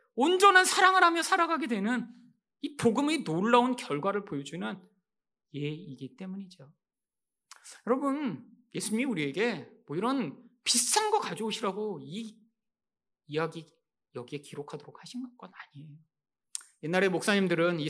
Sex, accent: male, native